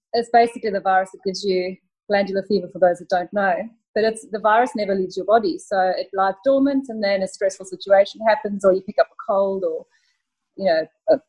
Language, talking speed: English, 225 wpm